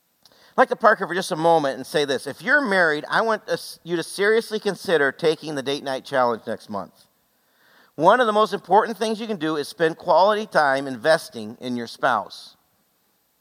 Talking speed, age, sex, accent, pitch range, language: 195 wpm, 50-69, male, American, 150-205 Hz, English